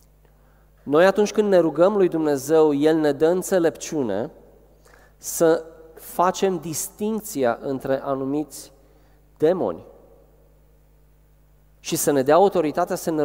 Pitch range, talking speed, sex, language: 150-195 Hz, 110 wpm, male, Romanian